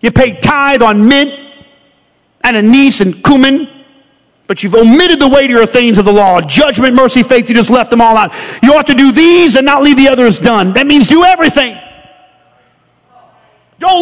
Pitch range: 245-310 Hz